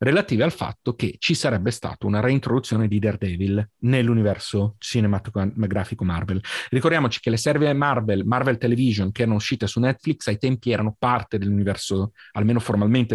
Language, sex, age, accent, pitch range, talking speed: Italian, male, 30-49, native, 105-130 Hz, 150 wpm